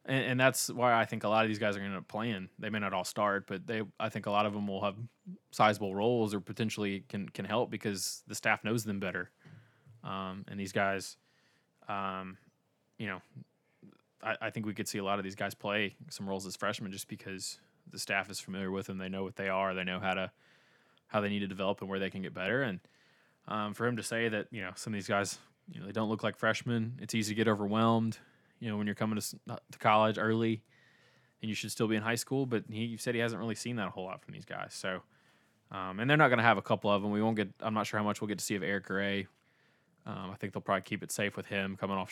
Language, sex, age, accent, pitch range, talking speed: English, male, 20-39, American, 95-110 Hz, 270 wpm